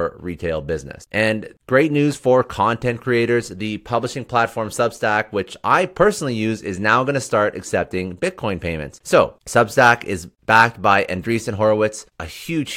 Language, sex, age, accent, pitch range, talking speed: English, male, 30-49, American, 90-120 Hz, 155 wpm